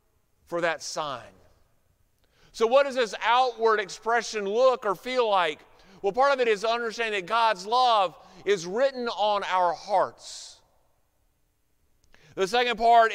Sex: male